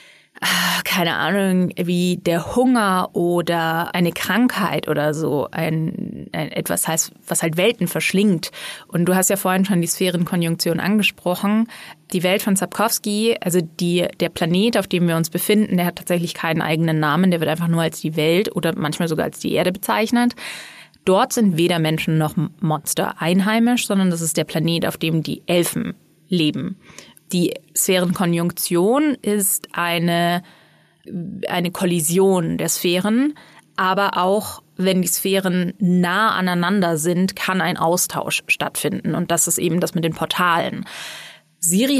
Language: German